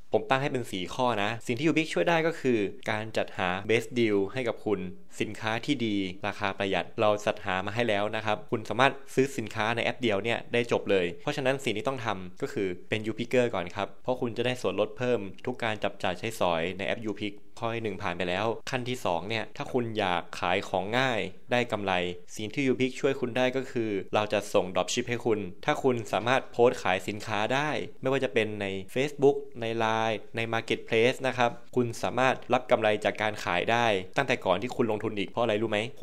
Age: 20-39